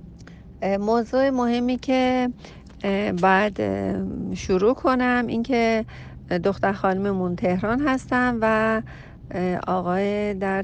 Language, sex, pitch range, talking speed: Persian, female, 175-215 Hz, 80 wpm